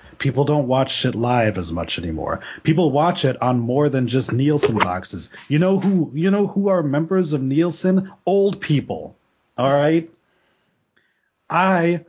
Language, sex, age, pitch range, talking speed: English, male, 30-49, 120-165 Hz, 160 wpm